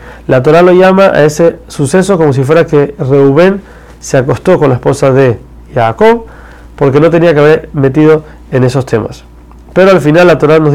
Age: 30-49